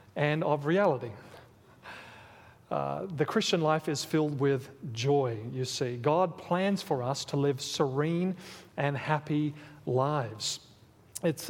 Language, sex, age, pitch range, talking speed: English, male, 40-59, 135-175 Hz, 125 wpm